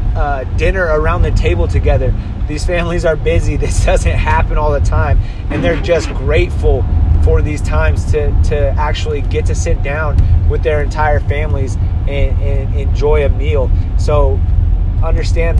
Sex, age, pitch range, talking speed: male, 30-49, 85-90 Hz, 160 wpm